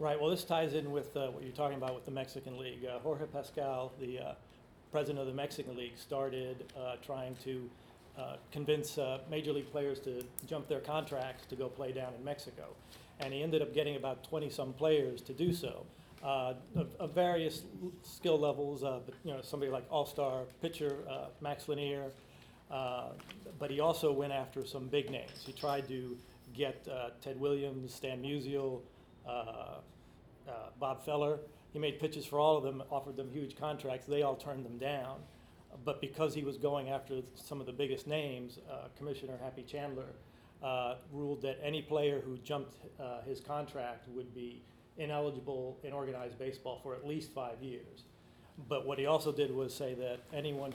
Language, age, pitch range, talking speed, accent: English, 40-59, 130-145 Hz, 185 wpm, American